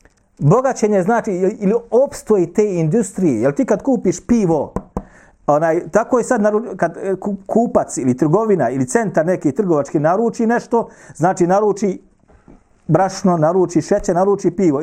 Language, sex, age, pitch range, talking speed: English, male, 40-59, 165-225 Hz, 125 wpm